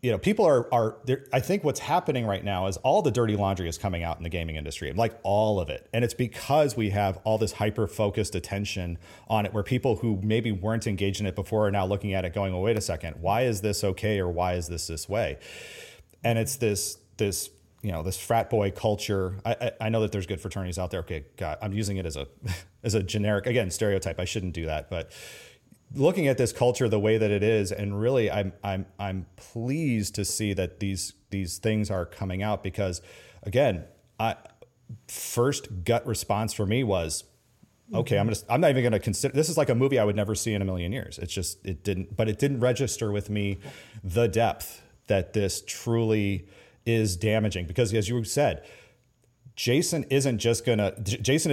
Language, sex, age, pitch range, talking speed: English, male, 30-49, 95-115 Hz, 220 wpm